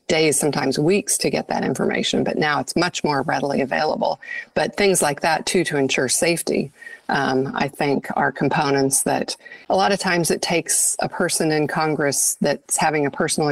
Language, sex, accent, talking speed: English, female, American, 185 wpm